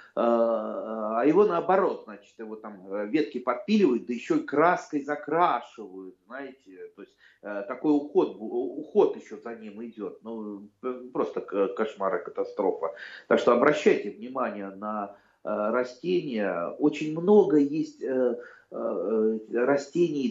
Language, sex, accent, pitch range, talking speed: Russian, male, native, 110-155 Hz, 110 wpm